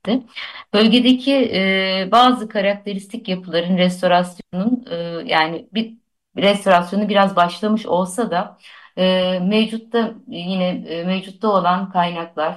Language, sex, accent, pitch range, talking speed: Turkish, female, native, 170-215 Hz, 110 wpm